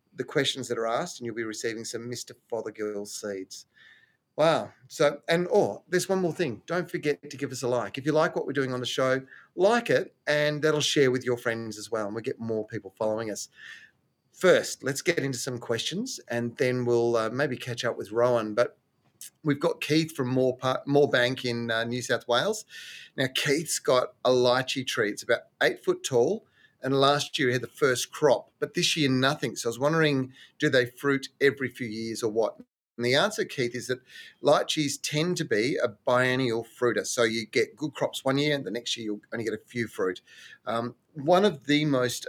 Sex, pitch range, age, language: male, 115-145 Hz, 30-49, English